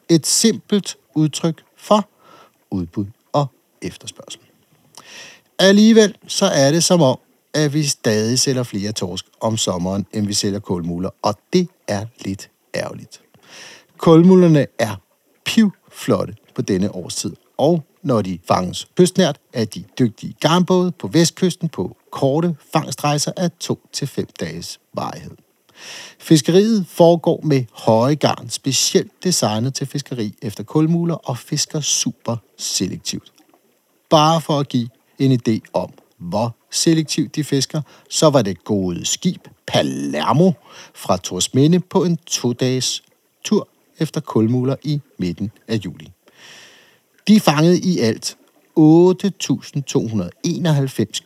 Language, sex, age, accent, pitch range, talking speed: Danish, male, 60-79, native, 115-170 Hz, 120 wpm